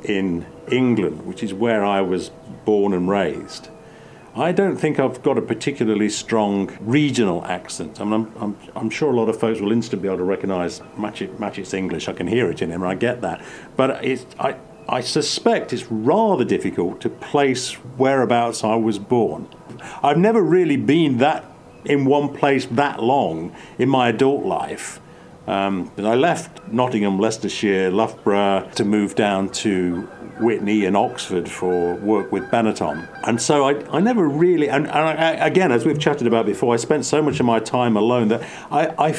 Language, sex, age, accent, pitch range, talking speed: English, male, 50-69, British, 100-135 Hz, 180 wpm